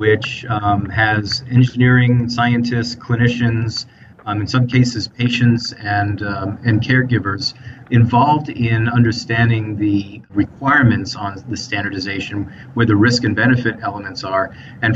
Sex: male